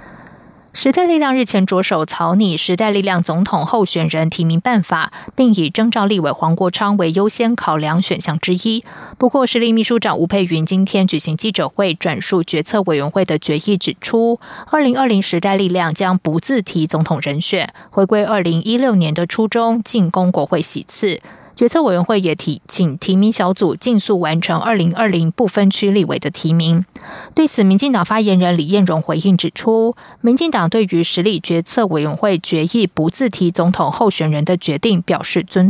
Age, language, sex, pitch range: 20-39, German, female, 170-220 Hz